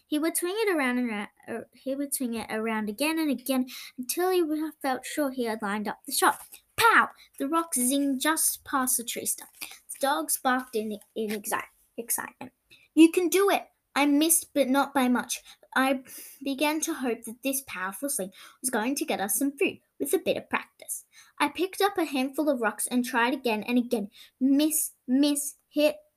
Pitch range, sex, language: 235-300 Hz, female, English